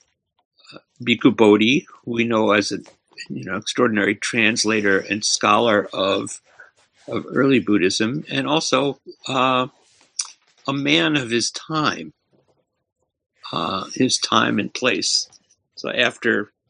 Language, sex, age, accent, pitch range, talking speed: English, male, 60-79, American, 110-140 Hz, 110 wpm